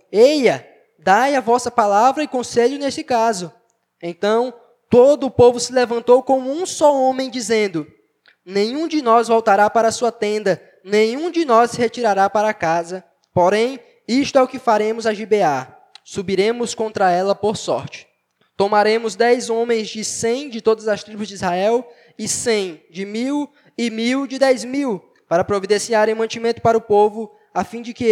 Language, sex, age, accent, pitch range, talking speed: Portuguese, male, 20-39, Brazilian, 195-245 Hz, 170 wpm